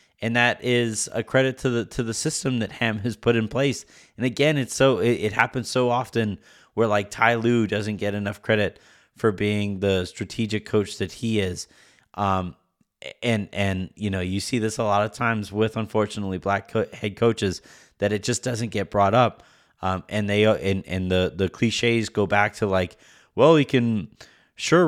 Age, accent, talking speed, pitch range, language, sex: 30-49, American, 200 wpm, 95-120 Hz, English, male